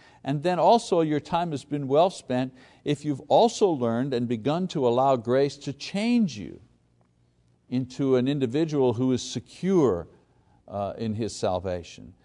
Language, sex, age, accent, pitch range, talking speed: English, male, 60-79, American, 100-145 Hz, 145 wpm